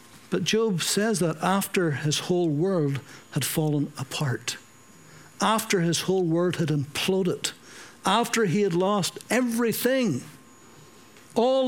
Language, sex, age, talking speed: English, male, 60-79, 120 wpm